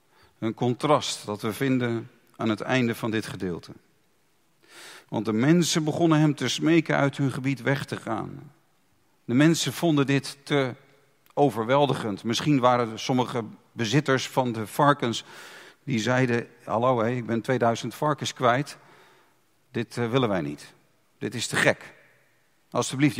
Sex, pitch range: male, 120-165 Hz